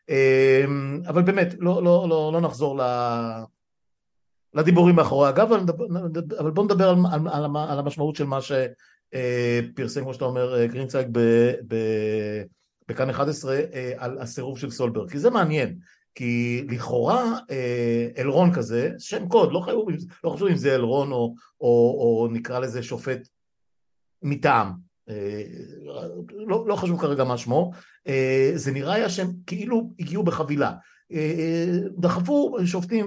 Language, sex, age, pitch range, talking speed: Hebrew, male, 50-69, 130-175 Hz, 120 wpm